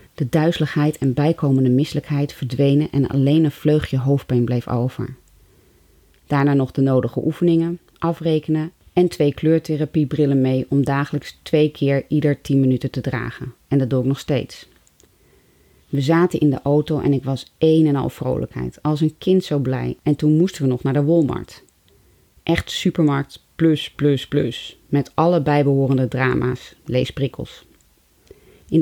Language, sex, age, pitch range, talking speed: Dutch, female, 30-49, 130-155 Hz, 155 wpm